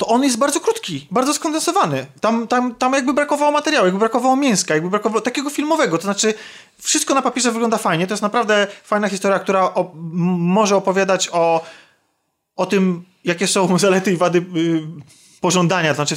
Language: Polish